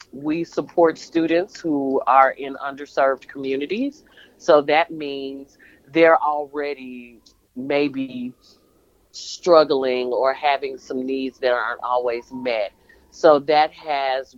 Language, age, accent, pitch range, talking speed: English, 40-59, American, 125-155 Hz, 110 wpm